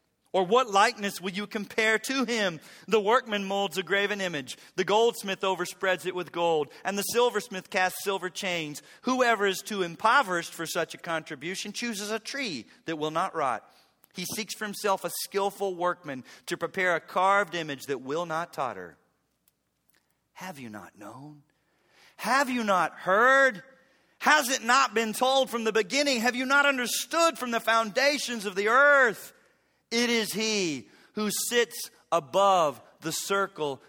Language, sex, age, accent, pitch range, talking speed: English, male, 40-59, American, 160-220 Hz, 160 wpm